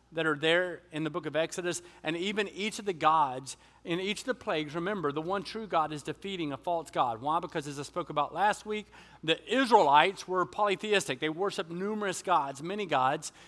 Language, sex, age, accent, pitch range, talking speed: English, male, 40-59, American, 155-195 Hz, 210 wpm